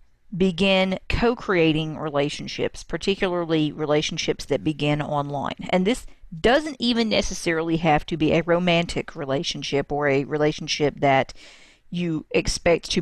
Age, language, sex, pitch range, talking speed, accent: 40-59, English, female, 155-200 Hz, 120 wpm, American